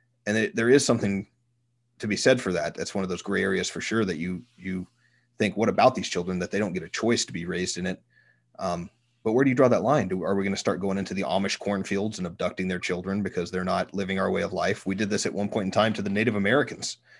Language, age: English, 30-49